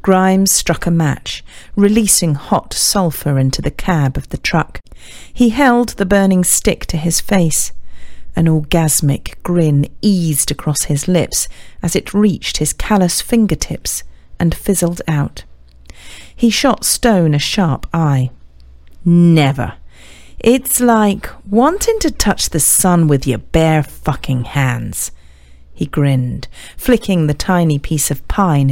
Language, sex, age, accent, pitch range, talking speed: English, female, 40-59, British, 125-185 Hz, 135 wpm